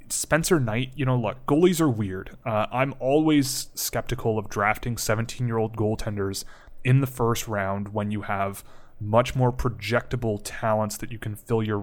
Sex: male